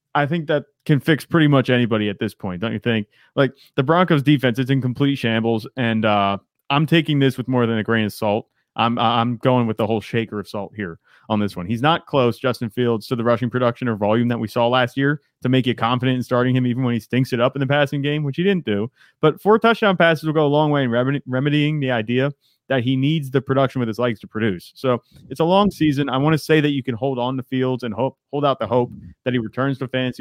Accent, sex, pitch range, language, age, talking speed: American, male, 120-145 Hz, English, 30-49, 270 wpm